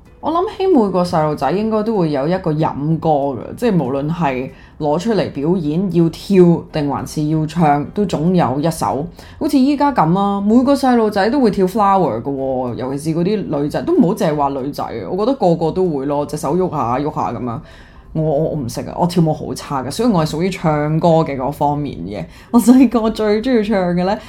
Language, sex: Chinese, female